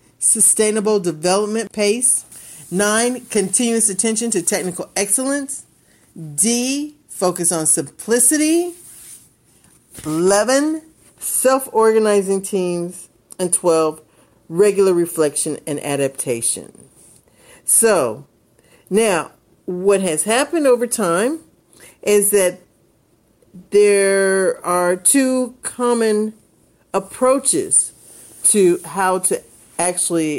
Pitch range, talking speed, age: 160-220 Hz, 80 wpm, 50-69